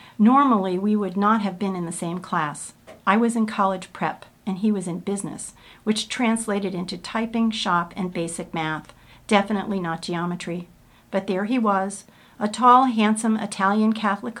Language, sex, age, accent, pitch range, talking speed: English, female, 50-69, American, 185-225 Hz, 165 wpm